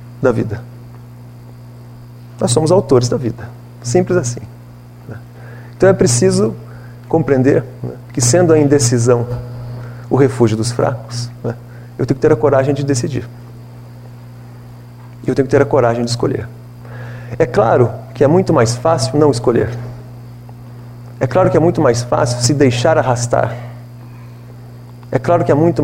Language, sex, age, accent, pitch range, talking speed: Portuguese, male, 40-59, Brazilian, 120-135 Hz, 140 wpm